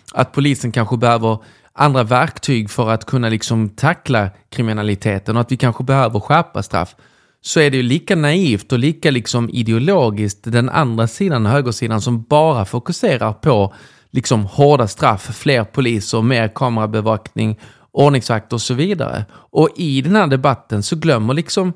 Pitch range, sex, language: 110-145 Hz, male, Swedish